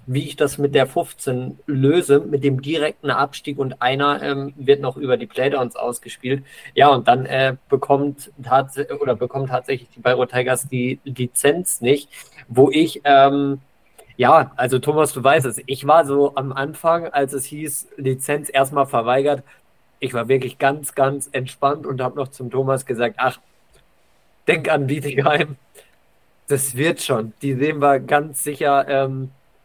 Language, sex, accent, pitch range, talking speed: German, male, German, 130-145 Hz, 160 wpm